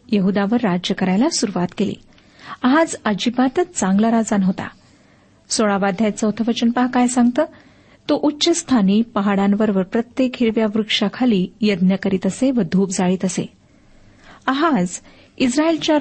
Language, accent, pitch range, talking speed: Marathi, native, 195-250 Hz, 115 wpm